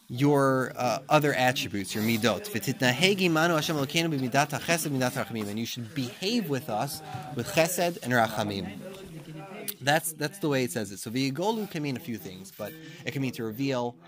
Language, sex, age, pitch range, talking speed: English, male, 20-39, 110-140 Hz, 155 wpm